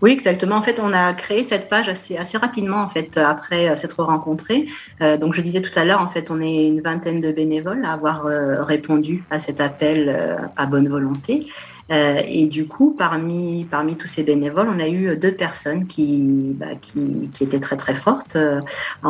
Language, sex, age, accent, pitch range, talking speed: French, female, 40-59, French, 140-165 Hz, 215 wpm